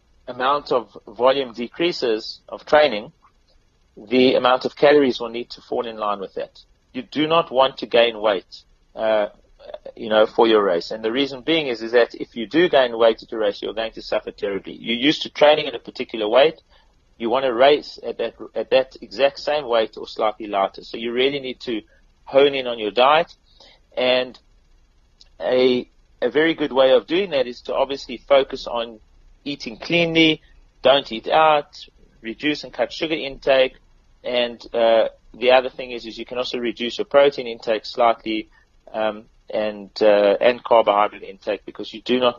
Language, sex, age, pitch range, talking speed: English, male, 40-59, 110-140 Hz, 185 wpm